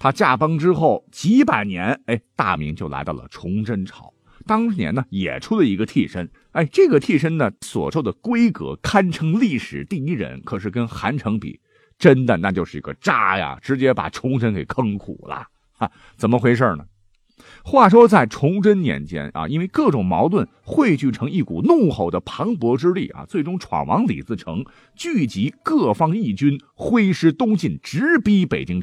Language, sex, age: Chinese, male, 50-69